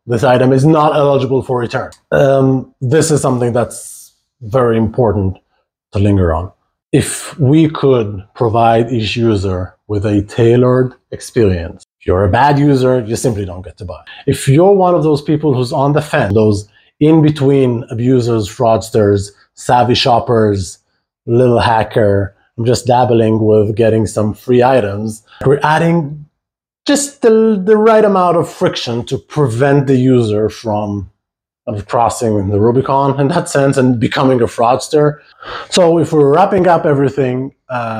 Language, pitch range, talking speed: English, 110-140 Hz, 155 wpm